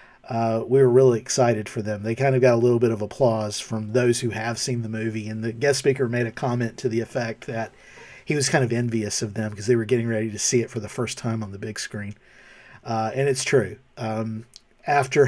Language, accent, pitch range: English, American, 110-130 Hz